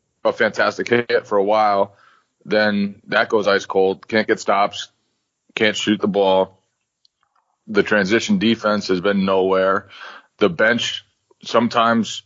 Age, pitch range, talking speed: 20-39, 95-110 Hz, 130 wpm